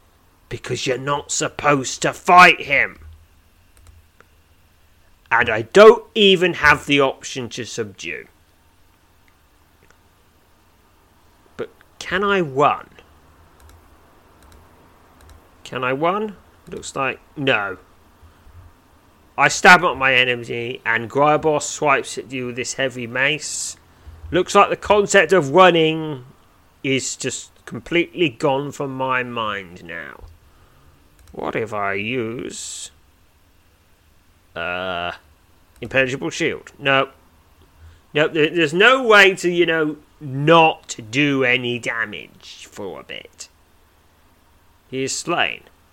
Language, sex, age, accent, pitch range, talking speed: English, male, 30-49, British, 85-140 Hz, 100 wpm